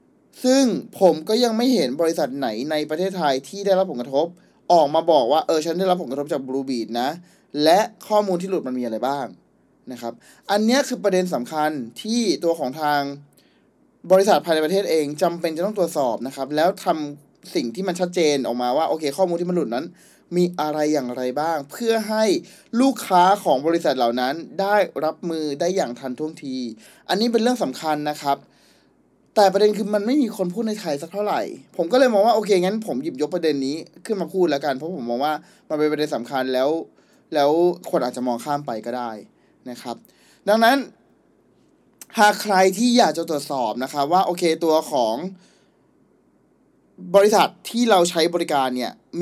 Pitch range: 140-200 Hz